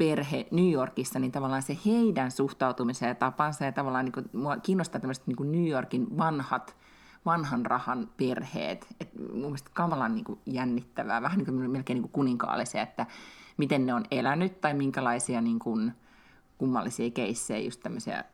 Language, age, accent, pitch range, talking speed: Finnish, 30-49, native, 125-180 Hz, 155 wpm